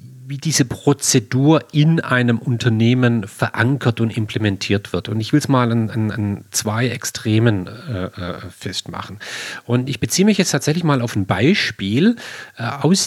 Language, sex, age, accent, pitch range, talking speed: German, male, 40-59, German, 110-145 Hz, 155 wpm